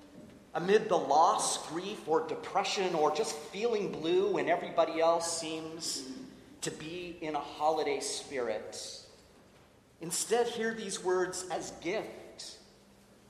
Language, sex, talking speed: English, male, 115 wpm